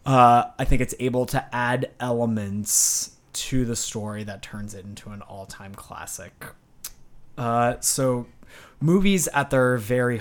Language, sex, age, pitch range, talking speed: English, male, 20-39, 110-135 Hz, 140 wpm